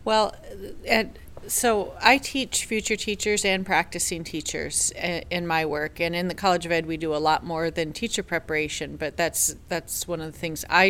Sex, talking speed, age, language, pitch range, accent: female, 195 wpm, 40-59, English, 155-185 Hz, American